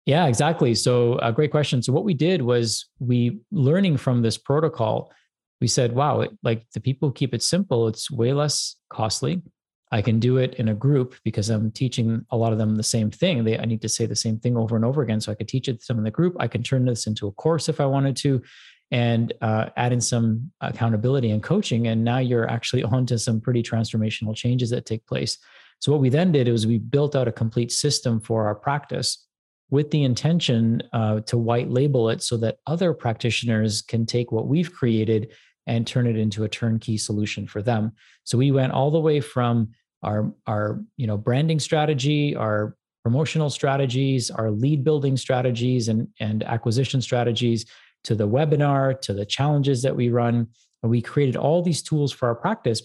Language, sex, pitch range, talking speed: English, male, 115-140 Hz, 210 wpm